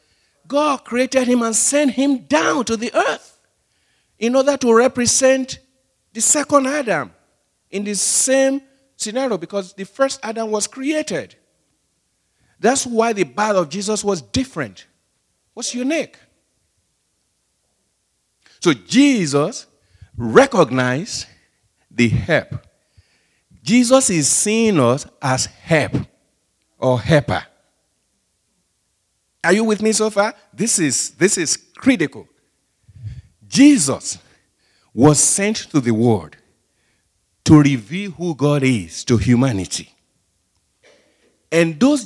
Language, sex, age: English, male, 50-69